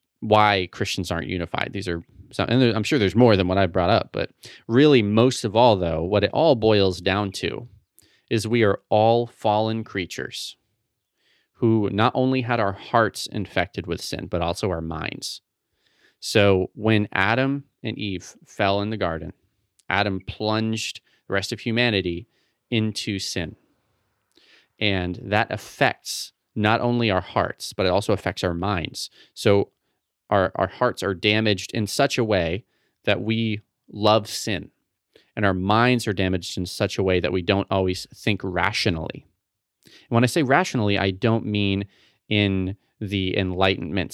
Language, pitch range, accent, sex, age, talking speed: English, 95-115 Hz, American, male, 30-49, 160 wpm